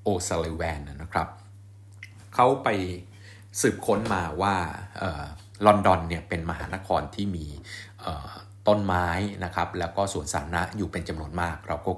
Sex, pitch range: male, 85-100 Hz